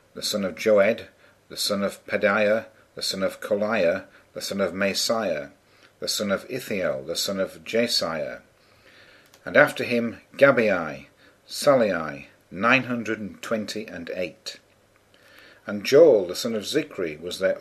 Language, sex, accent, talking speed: English, male, British, 135 wpm